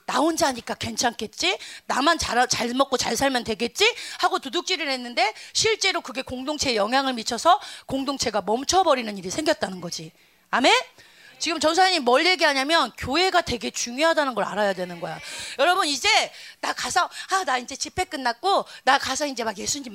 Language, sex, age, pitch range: Korean, female, 30-49, 225-350 Hz